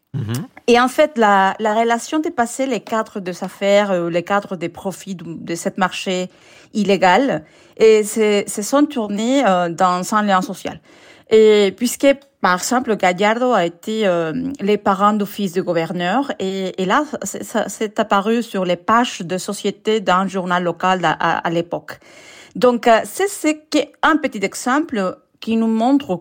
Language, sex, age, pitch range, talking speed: French, female, 40-59, 180-220 Hz, 165 wpm